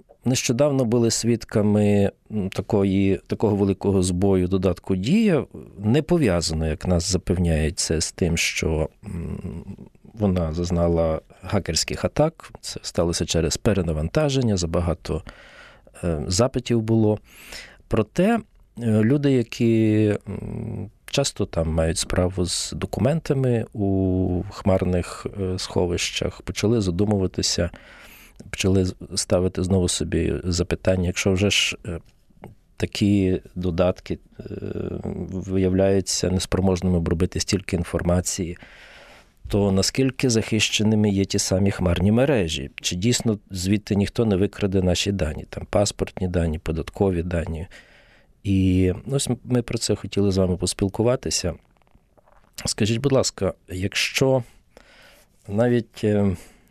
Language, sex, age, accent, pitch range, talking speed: Ukrainian, male, 40-59, native, 90-110 Hz, 100 wpm